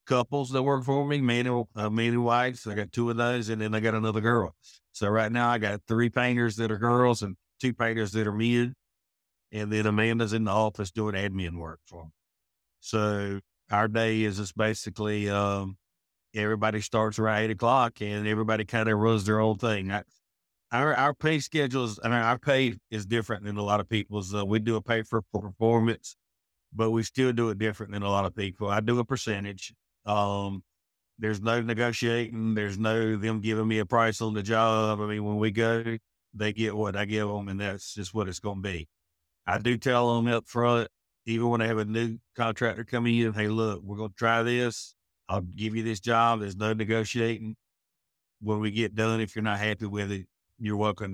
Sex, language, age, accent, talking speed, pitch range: male, English, 50-69, American, 215 wpm, 105-115 Hz